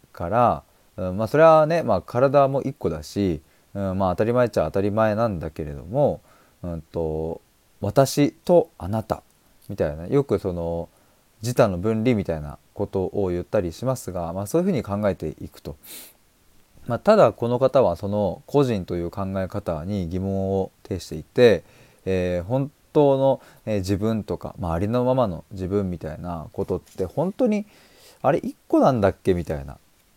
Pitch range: 90-135 Hz